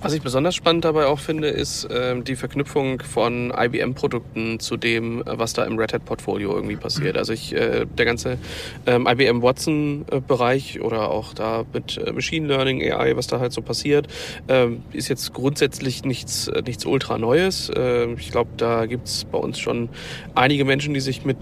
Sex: male